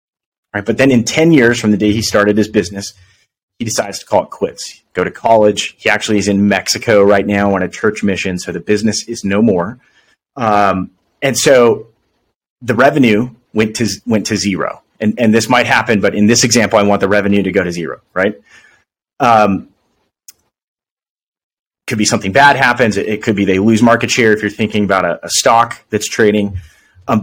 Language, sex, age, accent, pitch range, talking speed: English, male, 30-49, American, 100-115 Hz, 200 wpm